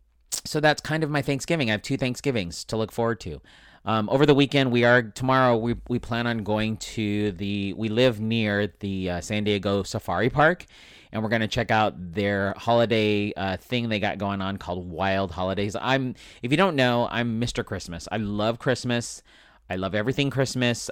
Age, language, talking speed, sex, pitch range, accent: 30-49, English, 205 wpm, male, 100-125 Hz, American